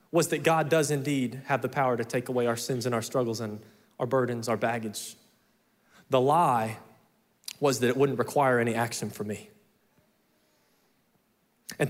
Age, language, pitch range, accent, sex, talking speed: 20-39, English, 130-205 Hz, American, male, 165 wpm